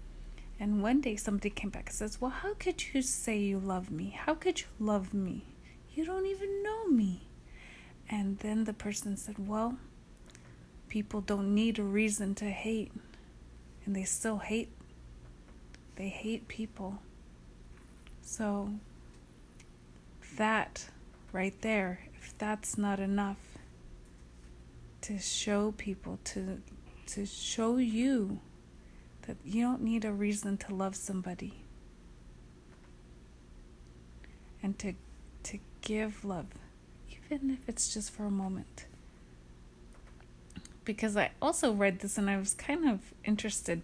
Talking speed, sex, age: 125 wpm, female, 30-49